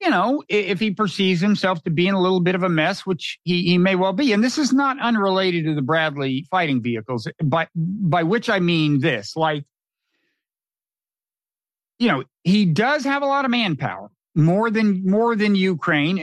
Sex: male